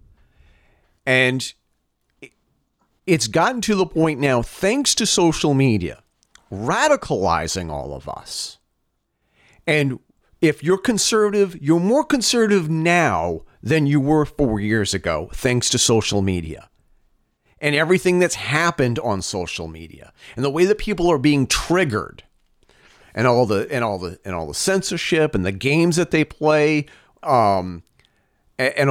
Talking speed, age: 135 wpm, 40-59